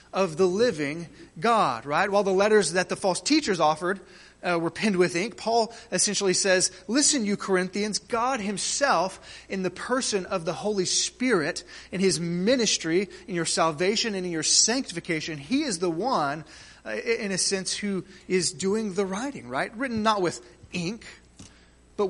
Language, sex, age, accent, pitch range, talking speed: English, male, 30-49, American, 175-210 Hz, 170 wpm